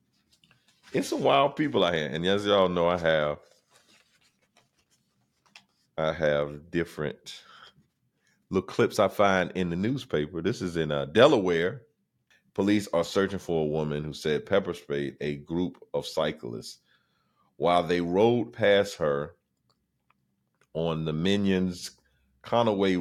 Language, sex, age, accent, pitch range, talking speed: English, male, 40-59, American, 80-120 Hz, 130 wpm